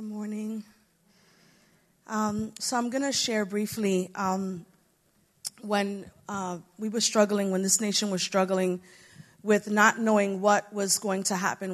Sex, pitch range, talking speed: female, 185-215 Hz, 140 wpm